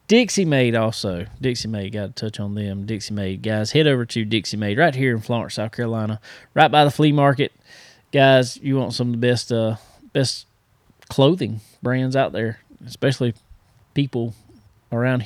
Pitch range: 110-135 Hz